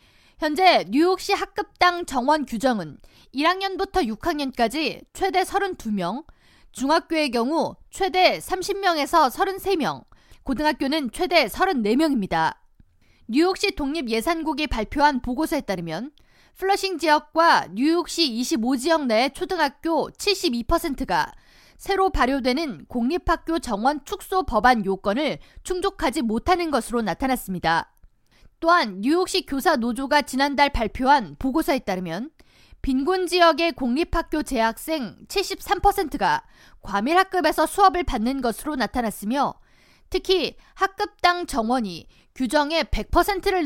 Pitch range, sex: 250-360 Hz, female